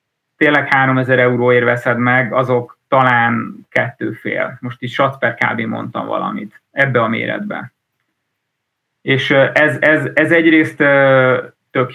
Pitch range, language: 125-150 Hz, Hungarian